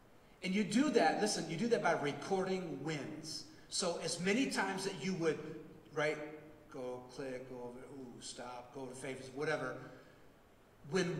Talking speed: 160 wpm